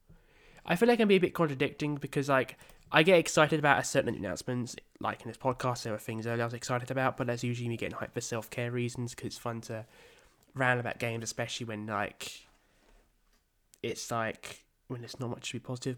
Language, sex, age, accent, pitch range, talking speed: English, male, 10-29, British, 110-135 Hz, 220 wpm